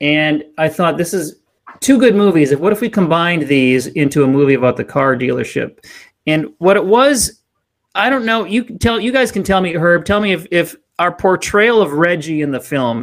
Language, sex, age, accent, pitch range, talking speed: English, male, 30-49, American, 145-195 Hz, 215 wpm